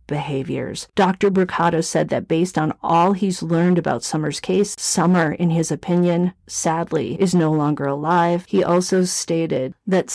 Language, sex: English, female